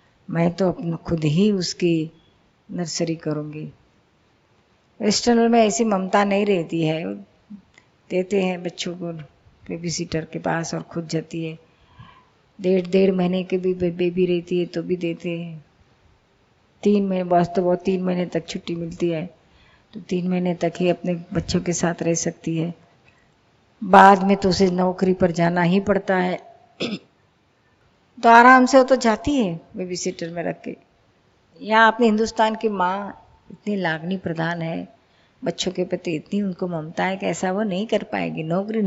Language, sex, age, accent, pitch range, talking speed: Hindi, female, 50-69, native, 170-220 Hz, 165 wpm